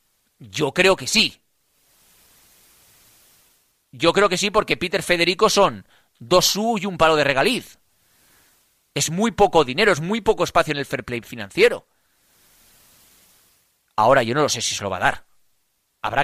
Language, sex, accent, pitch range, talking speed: Spanish, male, Spanish, 120-165 Hz, 165 wpm